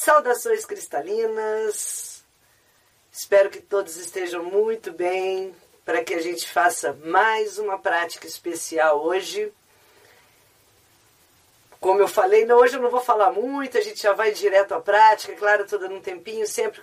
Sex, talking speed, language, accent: female, 145 wpm, Portuguese, Brazilian